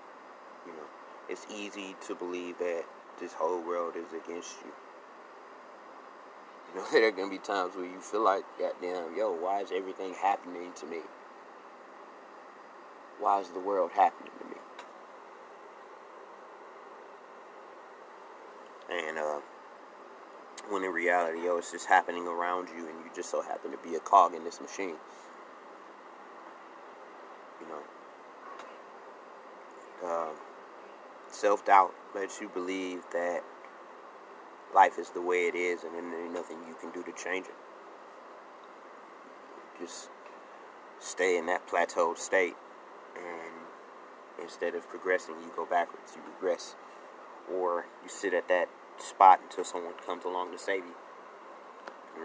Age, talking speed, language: 30-49, 135 wpm, English